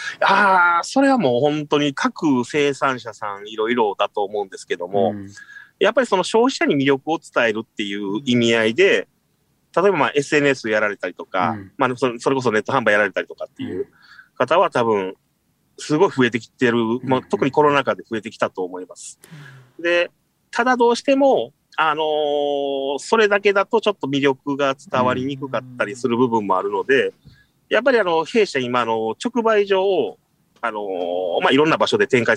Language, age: Japanese, 30-49